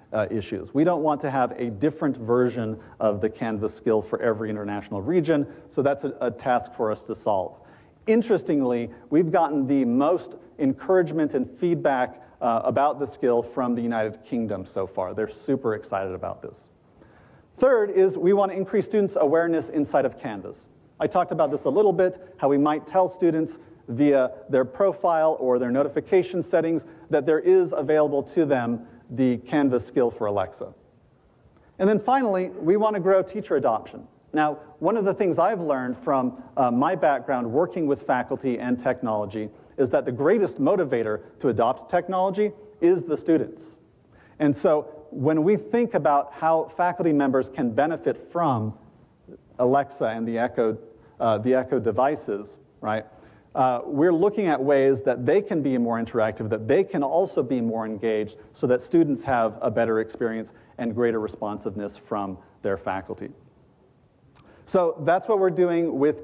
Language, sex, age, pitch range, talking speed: English, male, 40-59, 120-175 Hz, 170 wpm